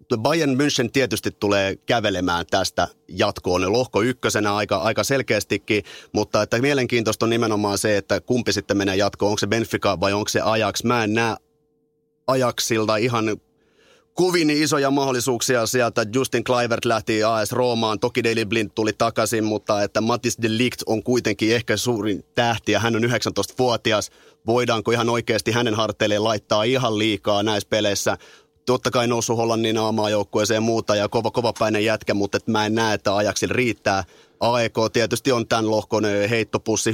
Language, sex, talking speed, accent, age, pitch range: Finnish, male, 160 wpm, native, 30-49, 105-120 Hz